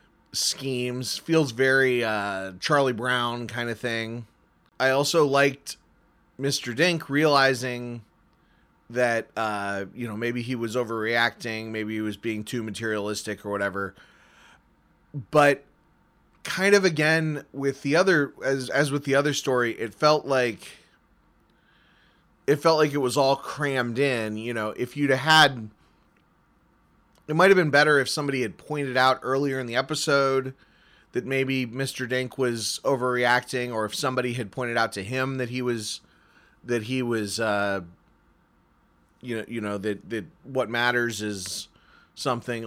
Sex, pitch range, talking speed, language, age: male, 115-145 Hz, 150 wpm, English, 20-39